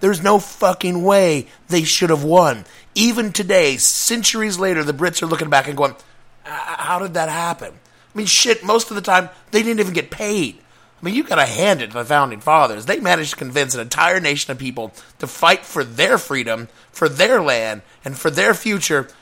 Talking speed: 210 wpm